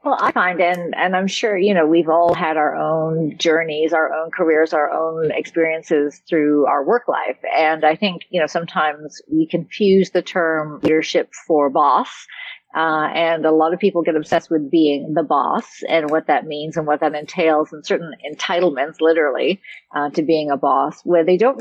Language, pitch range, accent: English, 155-180 Hz, American